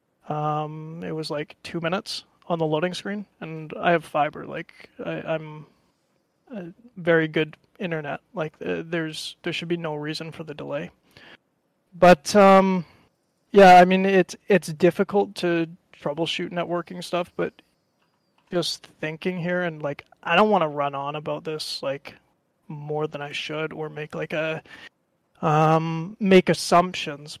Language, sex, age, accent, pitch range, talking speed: English, male, 20-39, American, 155-180 Hz, 150 wpm